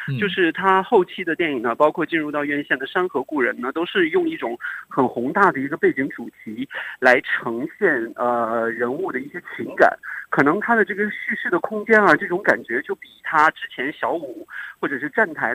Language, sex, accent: Chinese, male, native